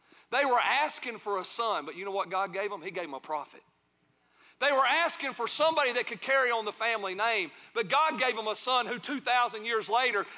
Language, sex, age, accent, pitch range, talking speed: English, male, 40-59, American, 230-315 Hz, 230 wpm